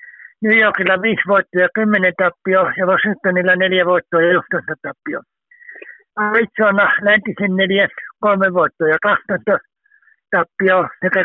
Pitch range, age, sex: 185-225 Hz, 60-79, male